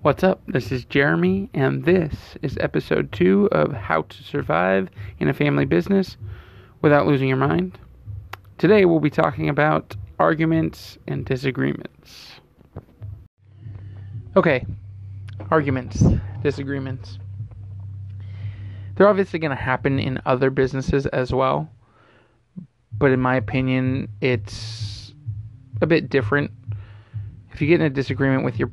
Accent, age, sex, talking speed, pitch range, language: American, 20-39, male, 125 wpm, 105-135 Hz, English